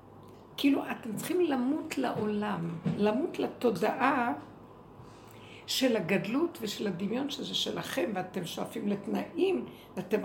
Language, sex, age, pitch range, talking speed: Hebrew, female, 60-79, 190-265 Hz, 100 wpm